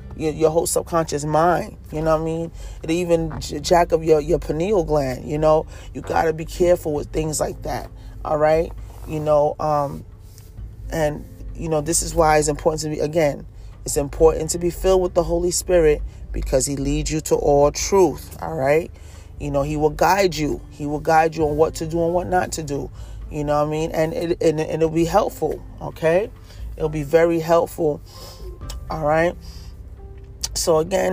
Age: 30-49